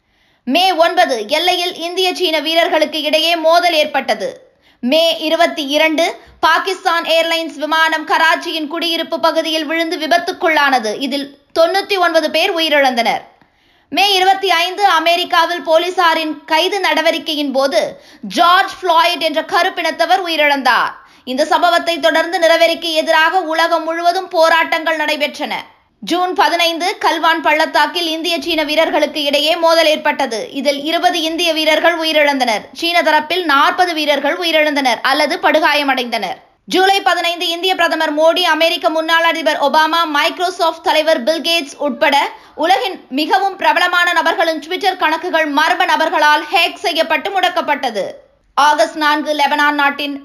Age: 20-39